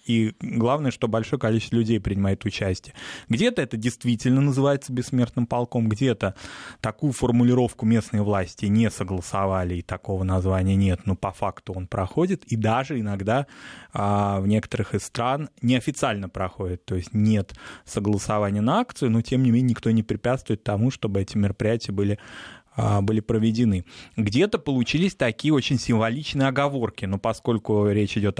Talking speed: 150 wpm